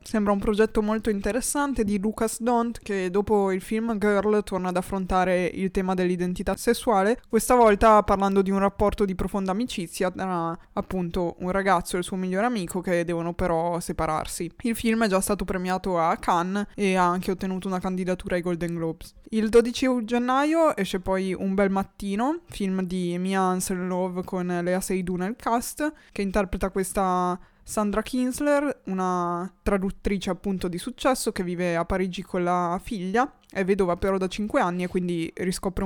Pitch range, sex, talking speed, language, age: 180-215 Hz, female, 170 wpm, Italian, 20-39